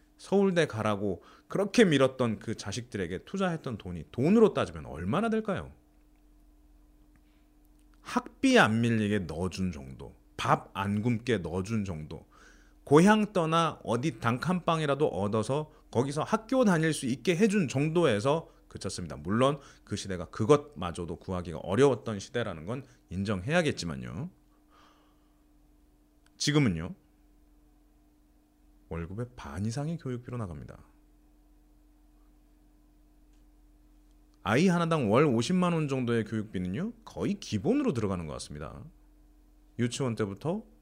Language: Korean